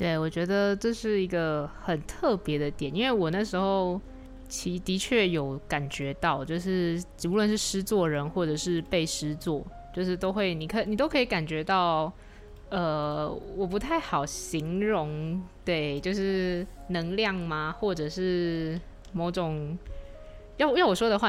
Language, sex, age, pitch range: Chinese, female, 20-39, 150-190 Hz